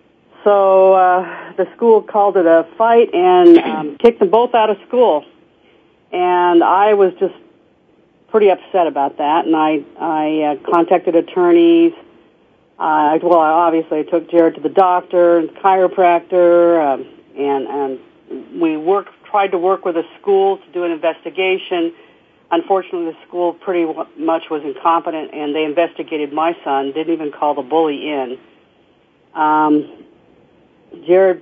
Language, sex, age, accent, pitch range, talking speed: English, female, 40-59, American, 155-190 Hz, 145 wpm